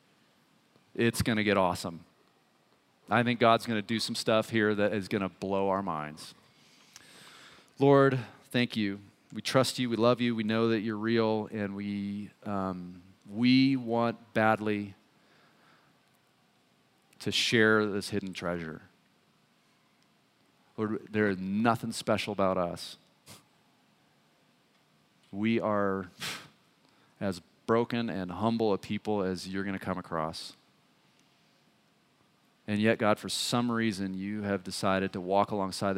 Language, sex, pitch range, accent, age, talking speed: English, male, 95-115 Hz, American, 40-59, 125 wpm